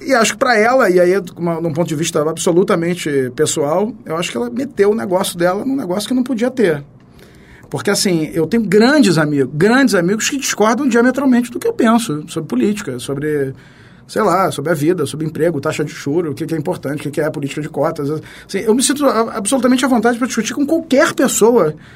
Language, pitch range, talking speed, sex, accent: Portuguese, 160-230 Hz, 210 wpm, male, Brazilian